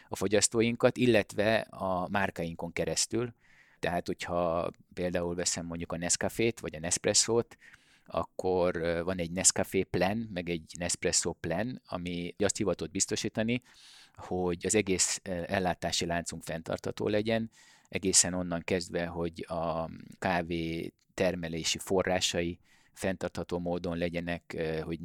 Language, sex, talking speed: Hungarian, male, 115 wpm